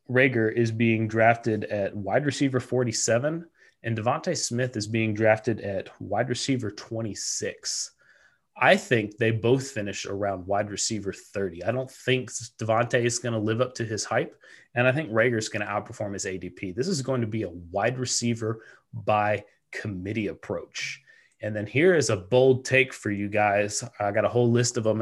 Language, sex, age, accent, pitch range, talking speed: English, male, 30-49, American, 105-125 Hz, 185 wpm